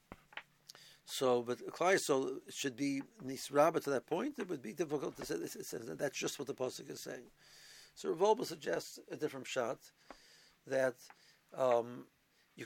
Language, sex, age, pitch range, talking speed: English, male, 60-79, 130-175 Hz, 150 wpm